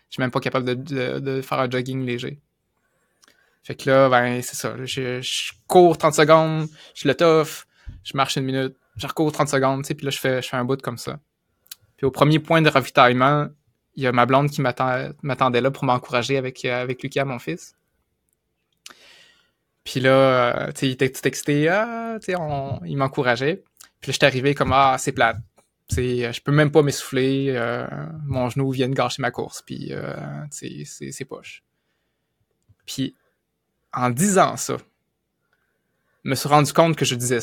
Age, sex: 20-39, male